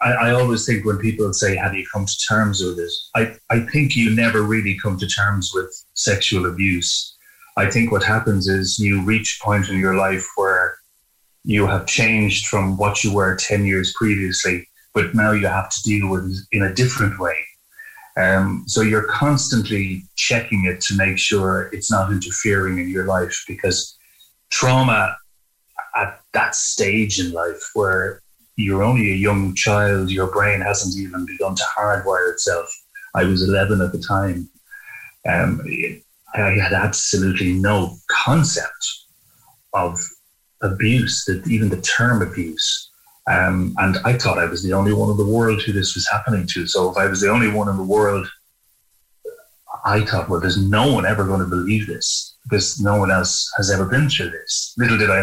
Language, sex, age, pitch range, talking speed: English, male, 30-49, 95-115 Hz, 180 wpm